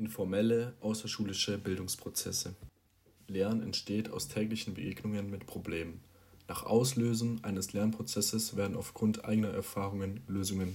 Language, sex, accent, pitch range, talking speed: German, male, German, 95-110 Hz, 105 wpm